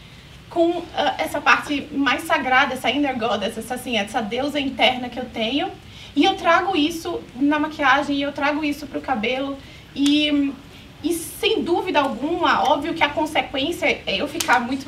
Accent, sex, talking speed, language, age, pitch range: Brazilian, female, 165 wpm, Portuguese, 20-39, 250-300 Hz